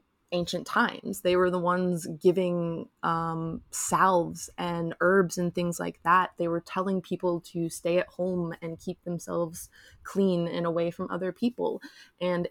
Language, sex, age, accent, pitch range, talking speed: English, female, 20-39, American, 170-190 Hz, 160 wpm